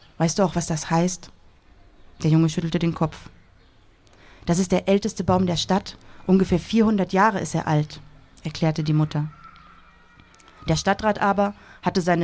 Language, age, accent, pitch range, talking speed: German, 30-49, German, 155-190 Hz, 155 wpm